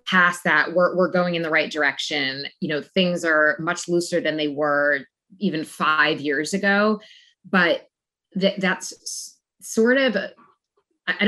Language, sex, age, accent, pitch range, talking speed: English, female, 20-39, American, 160-200 Hz, 160 wpm